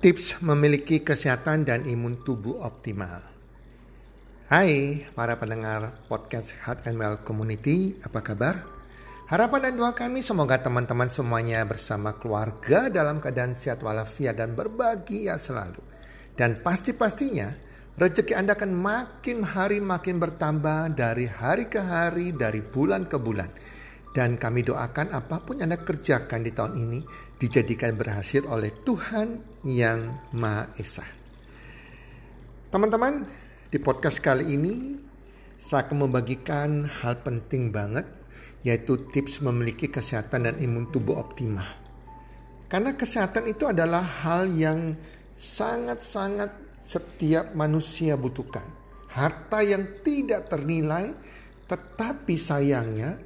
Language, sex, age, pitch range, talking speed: Indonesian, male, 50-69, 115-175 Hz, 115 wpm